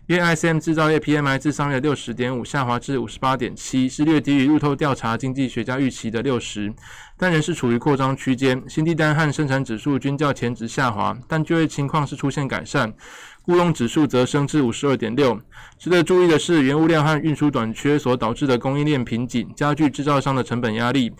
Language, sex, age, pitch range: Chinese, male, 20-39, 120-155 Hz